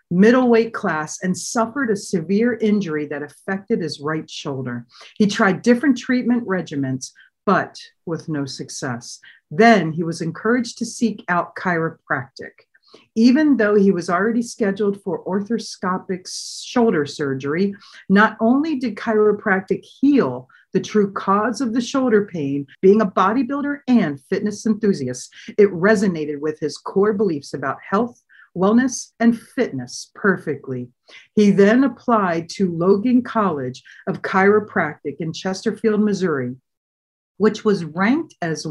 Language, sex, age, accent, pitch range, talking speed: English, female, 50-69, American, 160-225 Hz, 130 wpm